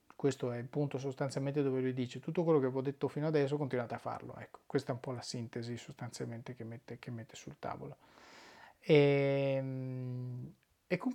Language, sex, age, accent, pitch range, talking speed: Italian, male, 30-49, native, 135-150 Hz, 190 wpm